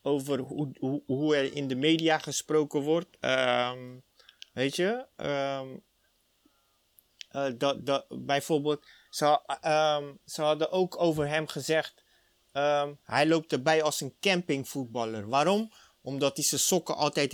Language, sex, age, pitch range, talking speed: Dutch, male, 30-49, 135-165 Hz, 115 wpm